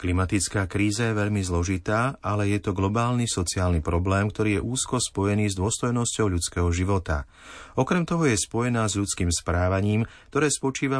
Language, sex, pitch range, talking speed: Slovak, male, 90-115 Hz, 155 wpm